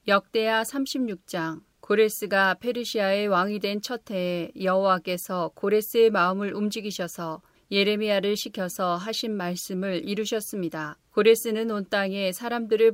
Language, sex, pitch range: Korean, female, 185-215 Hz